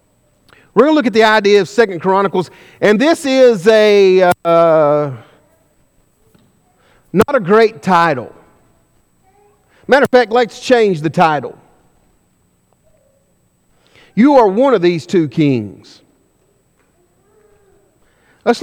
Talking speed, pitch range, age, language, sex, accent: 110 wpm, 175-235 Hz, 40-59, English, male, American